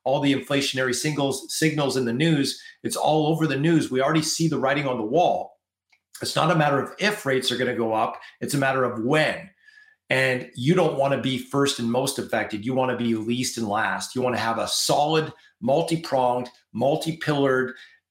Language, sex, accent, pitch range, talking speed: English, male, American, 125-155 Hz, 210 wpm